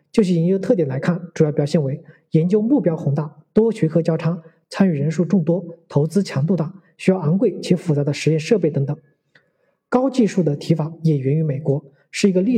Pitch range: 160-205 Hz